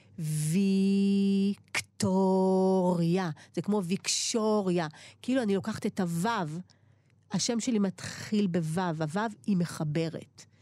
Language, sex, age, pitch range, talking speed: Hebrew, female, 40-59, 160-250 Hz, 90 wpm